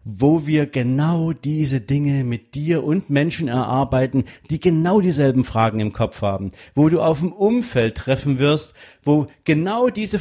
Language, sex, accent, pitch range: German, male, German, 115-155 Hz